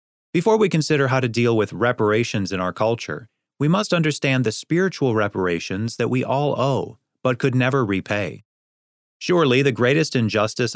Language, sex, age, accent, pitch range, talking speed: English, male, 30-49, American, 105-135 Hz, 160 wpm